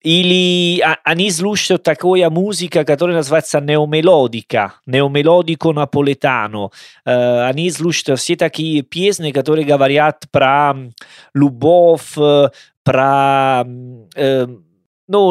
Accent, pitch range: Italian, 140-180 Hz